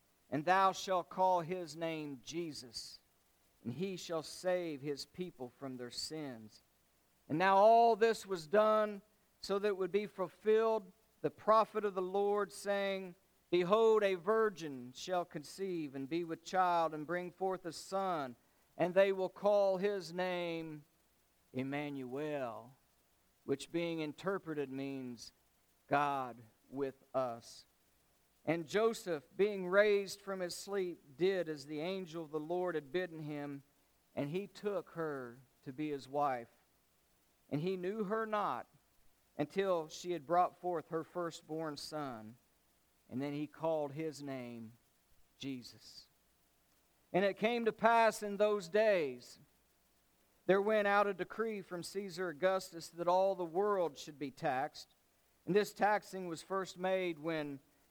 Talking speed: 140 wpm